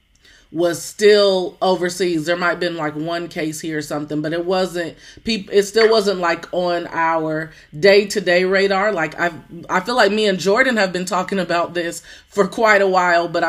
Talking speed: 190 wpm